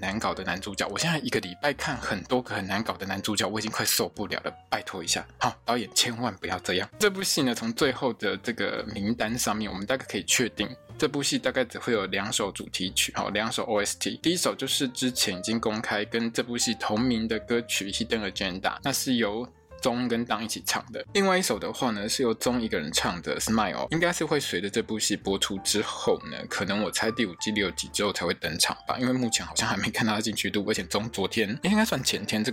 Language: Chinese